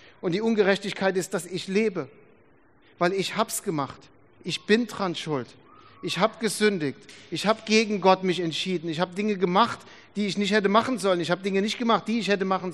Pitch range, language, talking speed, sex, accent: 175-210 Hz, German, 205 wpm, male, German